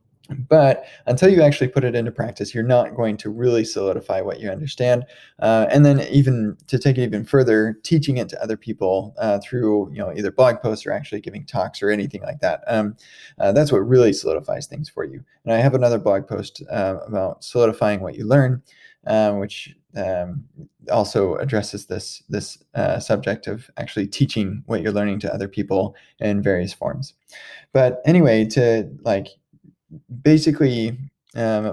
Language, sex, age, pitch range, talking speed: English, male, 20-39, 105-135 Hz, 180 wpm